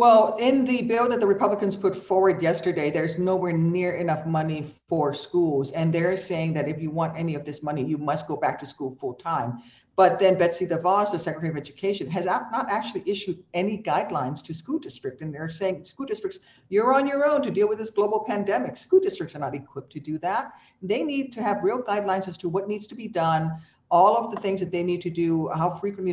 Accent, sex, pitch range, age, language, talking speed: American, female, 160-200 Hz, 50-69, English, 230 wpm